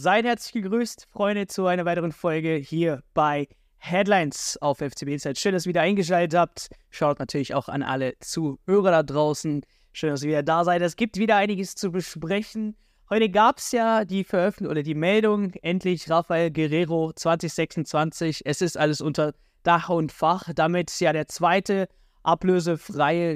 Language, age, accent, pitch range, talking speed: German, 20-39, German, 155-195 Hz, 165 wpm